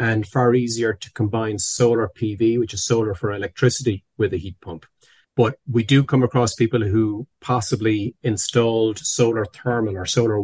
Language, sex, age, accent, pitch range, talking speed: English, male, 30-49, Irish, 105-125 Hz, 165 wpm